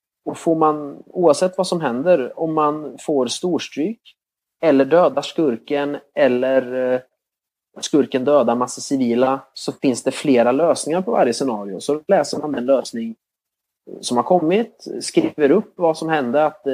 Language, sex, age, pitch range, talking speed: Swedish, male, 30-49, 125-150 Hz, 145 wpm